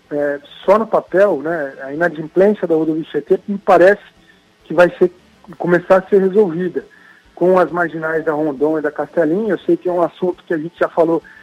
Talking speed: 200 wpm